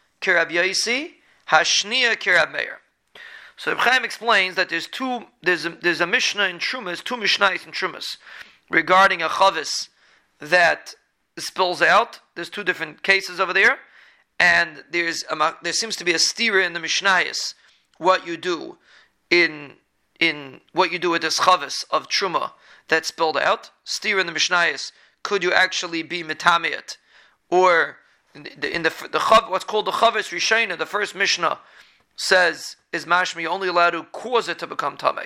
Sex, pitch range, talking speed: male, 170-195 Hz, 165 wpm